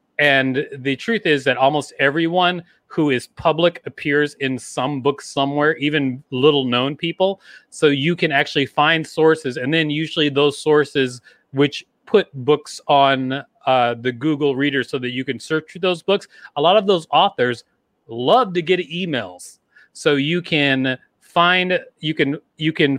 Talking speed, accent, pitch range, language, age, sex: 165 wpm, American, 125-155 Hz, English, 30-49, male